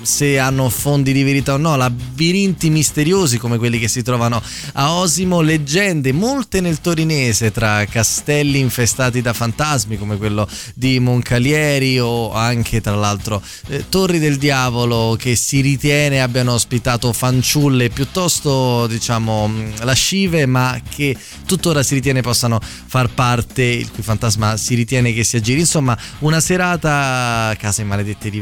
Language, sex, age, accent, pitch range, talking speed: Italian, male, 20-39, native, 115-145 Hz, 150 wpm